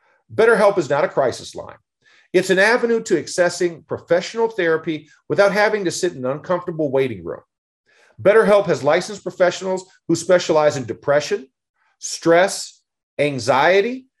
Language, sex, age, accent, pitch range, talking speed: English, male, 40-59, American, 165-215 Hz, 135 wpm